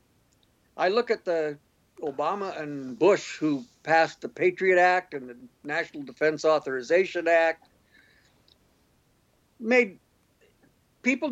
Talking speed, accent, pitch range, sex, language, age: 105 wpm, American, 155-230 Hz, male, English, 60-79